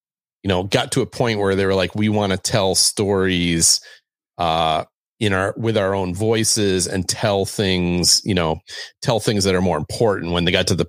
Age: 30-49